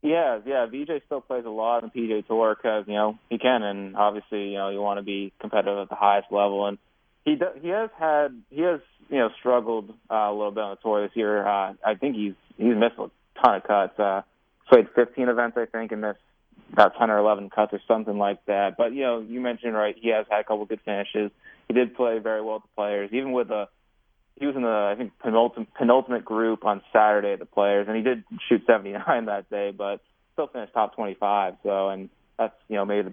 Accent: American